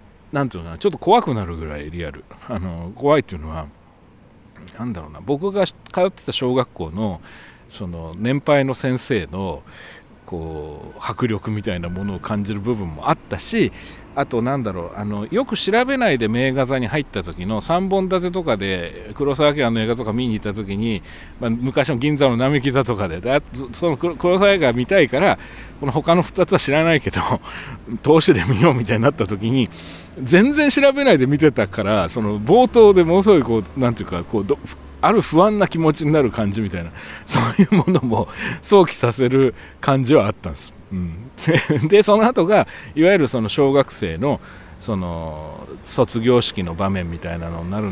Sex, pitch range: male, 95-150 Hz